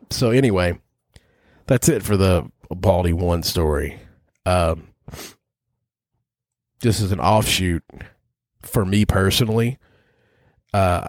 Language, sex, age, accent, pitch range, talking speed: English, male, 30-49, American, 90-115 Hz, 95 wpm